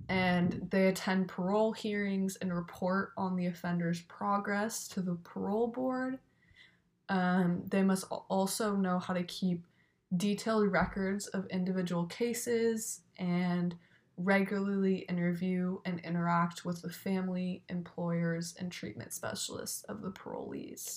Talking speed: 125 wpm